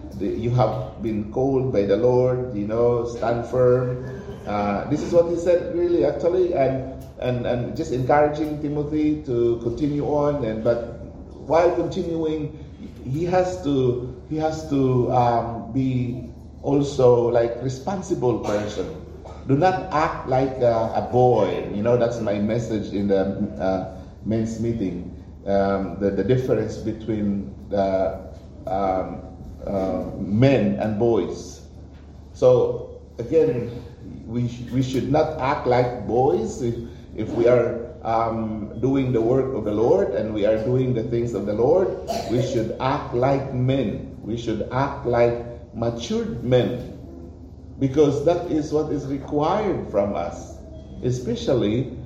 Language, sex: English, male